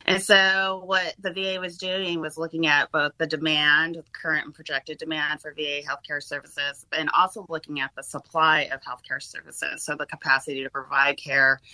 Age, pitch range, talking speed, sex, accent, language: 30-49, 140-165 Hz, 185 wpm, female, American, English